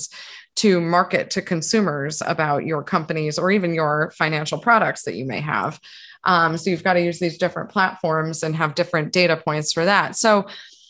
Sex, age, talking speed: female, 20-39, 180 wpm